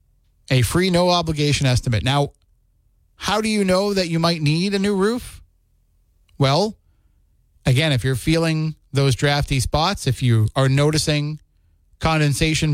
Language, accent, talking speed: English, American, 135 wpm